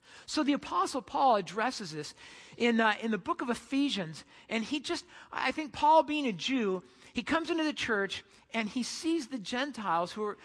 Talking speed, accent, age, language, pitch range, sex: 195 wpm, American, 50-69, English, 205-275 Hz, male